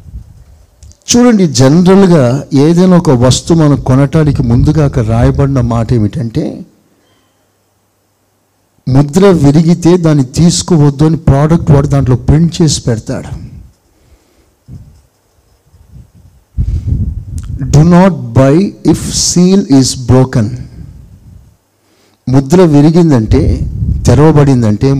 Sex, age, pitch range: male, 60-79, 110-160 Hz